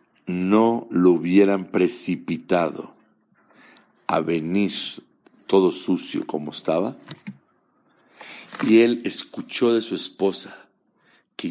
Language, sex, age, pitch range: Dutch, male, 50-69, 95-130 Hz